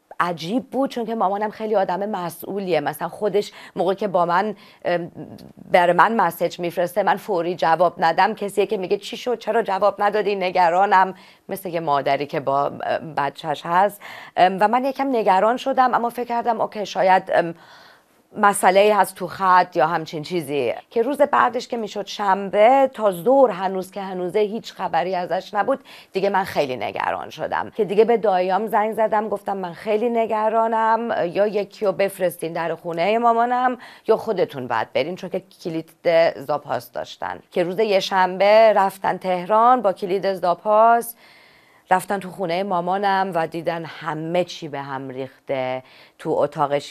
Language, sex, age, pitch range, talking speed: Persian, female, 40-59, 155-215 Hz, 155 wpm